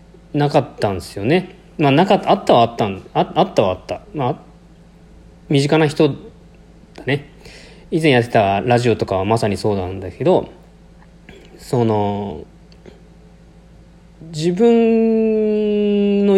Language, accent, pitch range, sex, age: Japanese, native, 120-160 Hz, male, 40-59